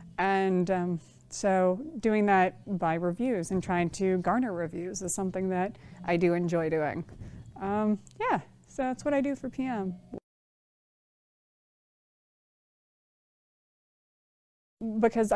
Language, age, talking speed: English, 30-49, 115 wpm